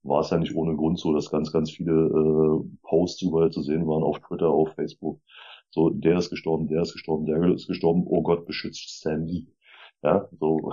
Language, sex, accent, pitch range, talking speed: German, male, German, 80-90 Hz, 205 wpm